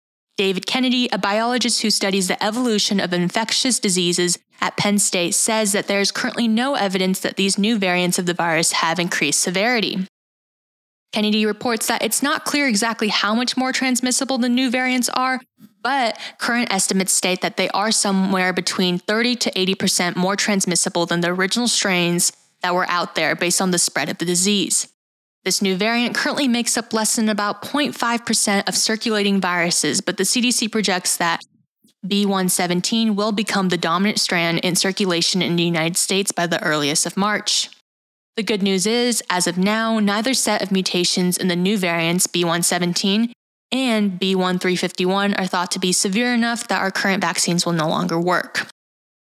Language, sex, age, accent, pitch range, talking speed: English, female, 10-29, American, 180-225 Hz, 175 wpm